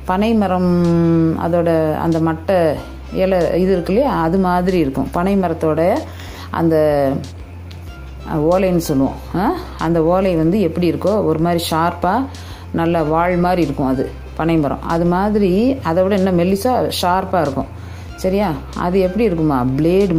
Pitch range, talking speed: 135-180 Hz, 100 wpm